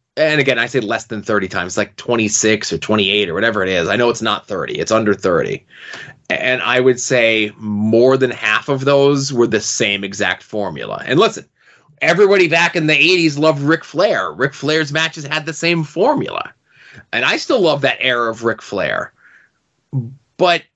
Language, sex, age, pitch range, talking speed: English, male, 30-49, 115-140 Hz, 190 wpm